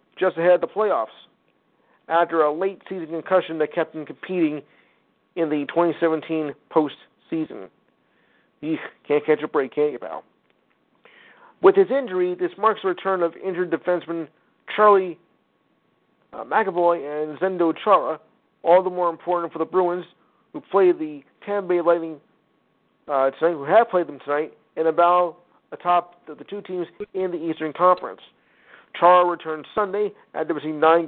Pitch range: 155-180 Hz